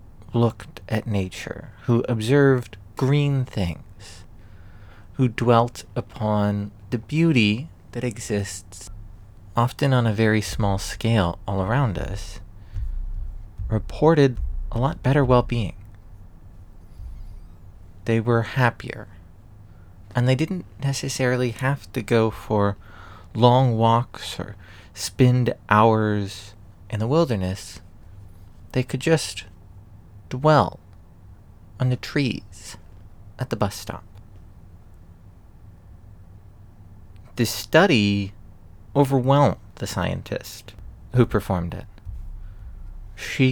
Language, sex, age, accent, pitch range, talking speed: English, male, 30-49, American, 95-120 Hz, 90 wpm